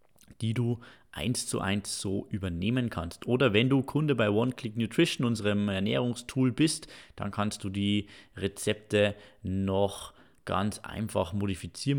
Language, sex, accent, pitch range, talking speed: German, male, German, 100-125 Hz, 140 wpm